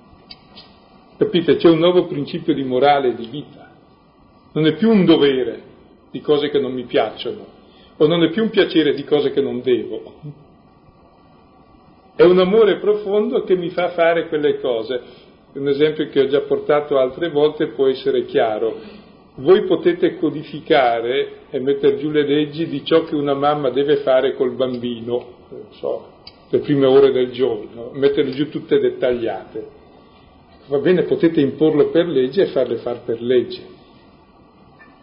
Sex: male